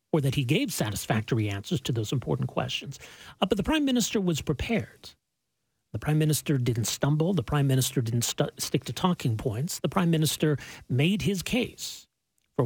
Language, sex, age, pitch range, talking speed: English, male, 40-59, 125-170 Hz, 175 wpm